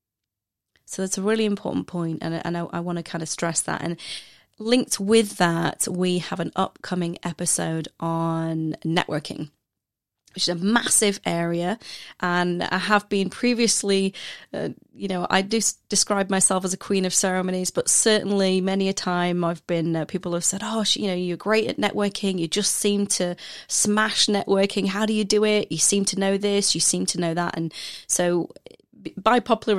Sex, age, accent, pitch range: female, 30-49, British, 165-200 Hz